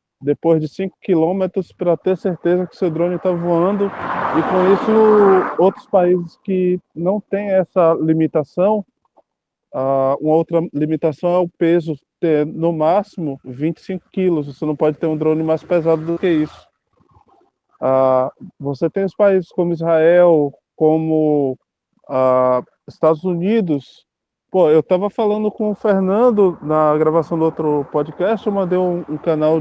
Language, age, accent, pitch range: Portuguese, 20-39, Brazilian, 155-195 Hz